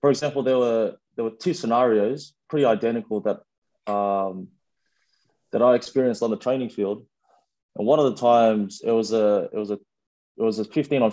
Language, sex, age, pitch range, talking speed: English, male, 20-39, 105-125 Hz, 190 wpm